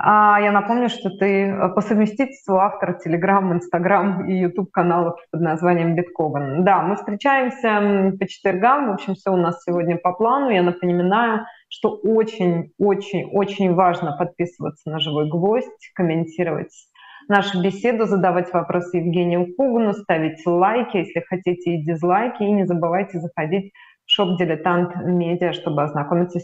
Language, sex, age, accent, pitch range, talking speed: Russian, female, 20-39, native, 175-210 Hz, 135 wpm